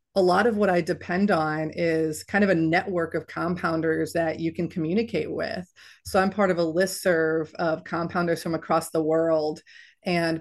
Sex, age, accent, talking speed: female, 30-49, American, 185 wpm